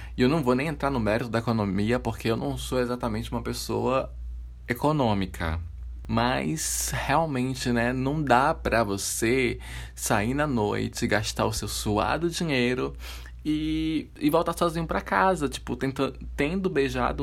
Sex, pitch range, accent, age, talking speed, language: male, 95-130 Hz, Brazilian, 20-39, 145 wpm, Portuguese